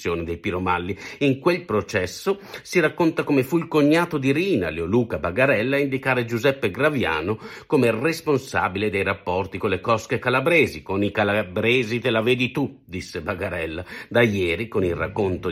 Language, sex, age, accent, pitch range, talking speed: Italian, male, 50-69, native, 105-145 Hz, 160 wpm